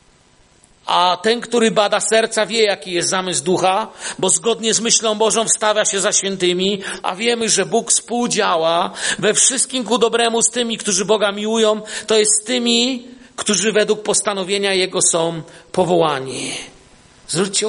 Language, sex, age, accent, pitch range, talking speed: Polish, male, 50-69, native, 190-230 Hz, 150 wpm